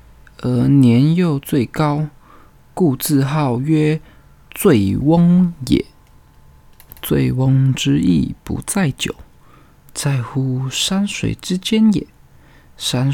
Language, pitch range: Chinese, 115-155 Hz